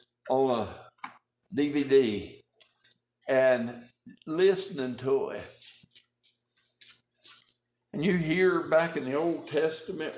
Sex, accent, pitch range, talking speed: male, American, 140-230 Hz, 90 wpm